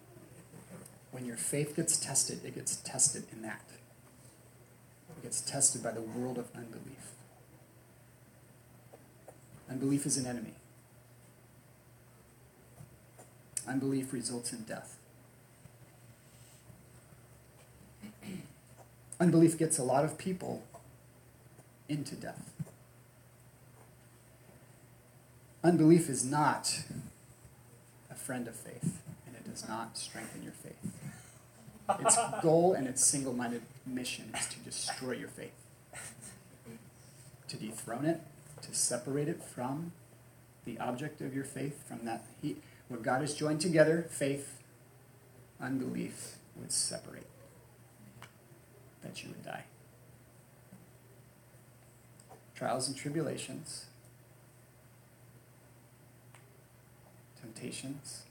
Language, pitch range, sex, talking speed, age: English, 120-140 Hz, male, 95 wpm, 30-49